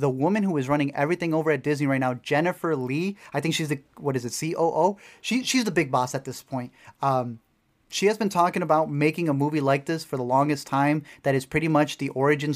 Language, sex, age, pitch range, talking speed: English, male, 20-39, 140-185 Hz, 240 wpm